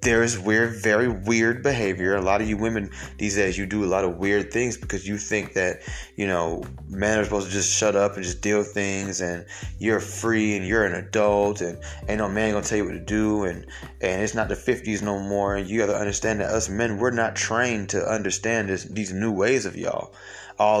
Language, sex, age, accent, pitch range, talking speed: English, male, 20-39, American, 100-120 Hz, 240 wpm